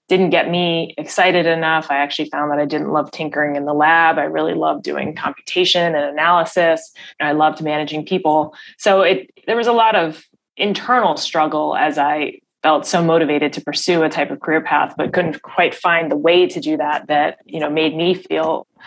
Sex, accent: female, American